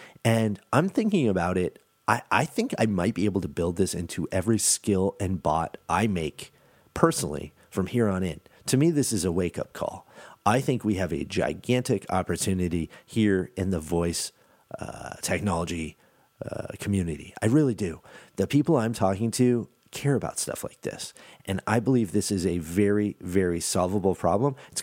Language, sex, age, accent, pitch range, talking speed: English, male, 40-59, American, 85-115 Hz, 175 wpm